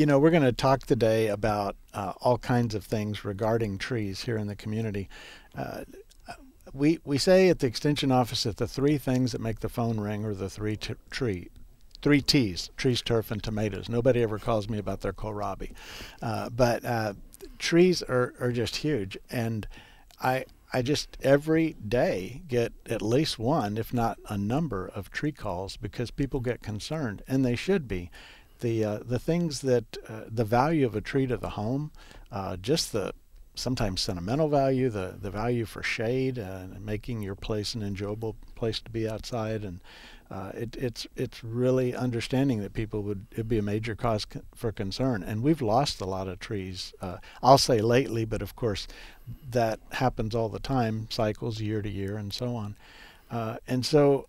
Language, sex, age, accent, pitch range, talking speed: English, male, 50-69, American, 105-130 Hz, 185 wpm